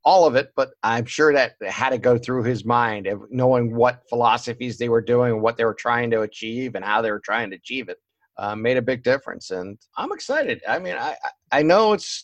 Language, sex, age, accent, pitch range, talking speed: English, male, 50-69, American, 115-155 Hz, 245 wpm